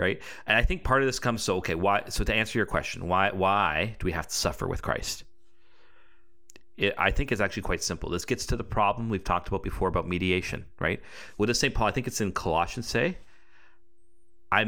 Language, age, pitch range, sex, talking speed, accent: English, 40-59, 85-115 Hz, male, 220 wpm, American